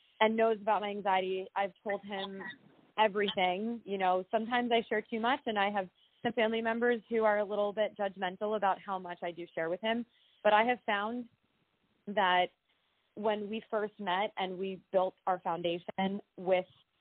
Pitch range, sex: 185-215 Hz, female